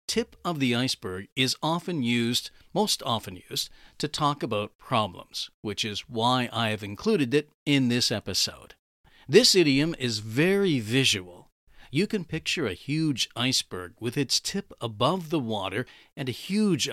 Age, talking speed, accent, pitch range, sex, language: 50-69, 155 wpm, American, 110-150 Hz, male, English